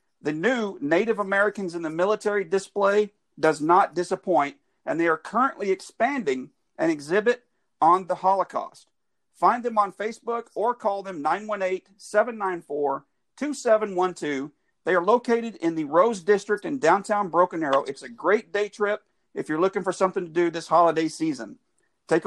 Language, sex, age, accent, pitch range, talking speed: English, male, 50-69, American, 180-215 Hz, 150 wpm